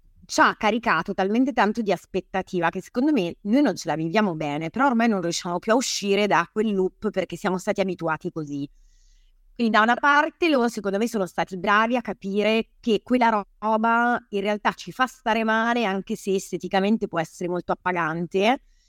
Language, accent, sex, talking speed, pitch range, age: Italian, native, female, 185 wpm, 180-225 Hz, 30-49